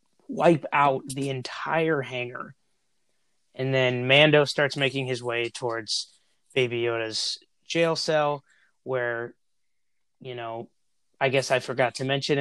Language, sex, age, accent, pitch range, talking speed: English, male, 20-39, American, 125-155 Hz, 125 wpm